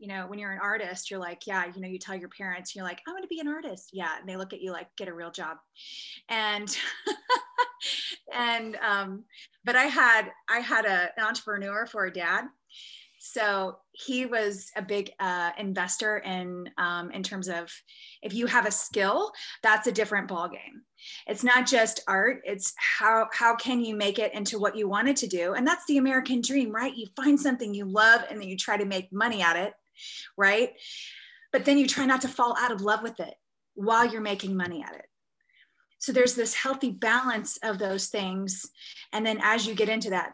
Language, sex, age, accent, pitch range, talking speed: English, female, 20-39, American, 195-250 Hz, 210 wpm